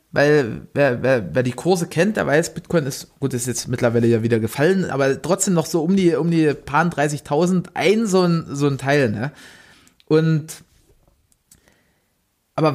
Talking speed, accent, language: 175 wpm, German, German